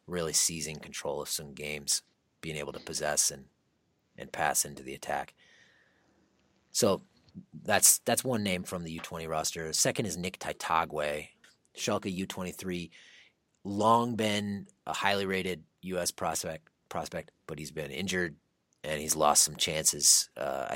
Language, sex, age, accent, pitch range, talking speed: English, male, 30-49, American, 80-105 Hz, 140 wpm